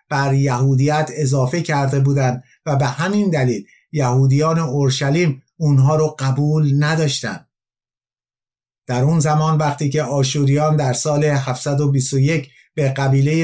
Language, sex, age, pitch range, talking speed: Persian, male, 50-69, 130-155 Hz, 115 wpm